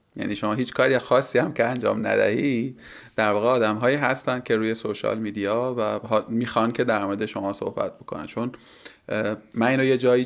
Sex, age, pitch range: male, 30-49, 100-120 Hz